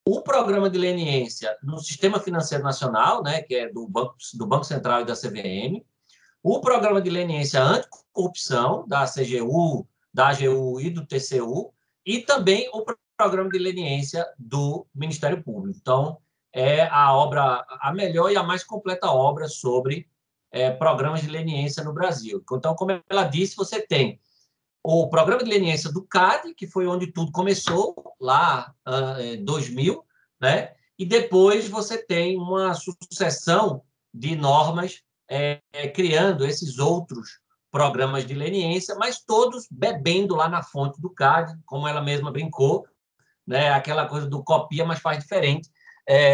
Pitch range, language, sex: 140-185 Hz, Portuguese, male